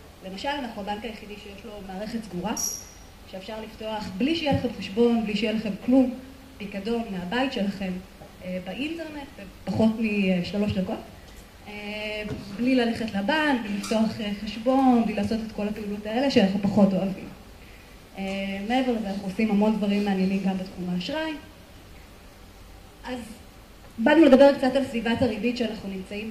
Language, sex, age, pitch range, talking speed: Hebrew, female, 30-49, 195-245 Hz, 130 wpm